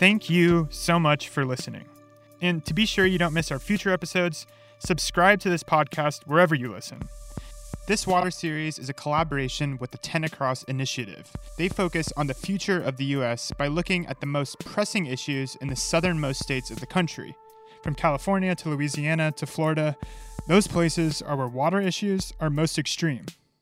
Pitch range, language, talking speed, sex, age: 145-180 Hz, English, 180 wpm, male, 30-49